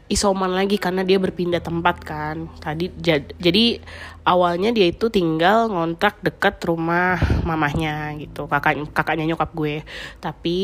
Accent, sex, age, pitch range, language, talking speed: native, female, 20-39, 160-200 Hz, Indonesian, 135 wpm